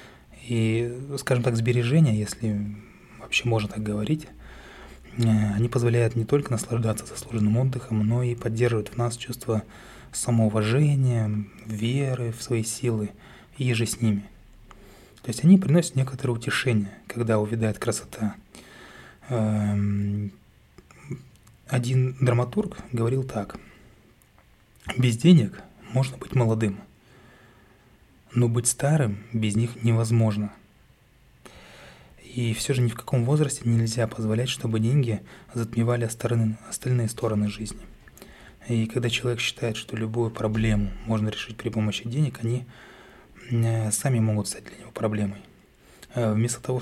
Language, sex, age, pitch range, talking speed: Russian, male, 20-39, 110-125 Hz, 115 wpm